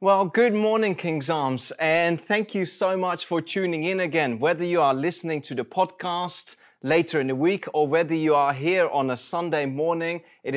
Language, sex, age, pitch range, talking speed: English, male, 20-39, 145-190 Hz, 200 wpm